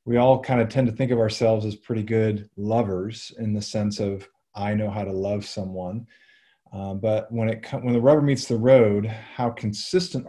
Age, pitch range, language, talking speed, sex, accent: 30-49, 100-125 Hz, English, 200 wpm, male, American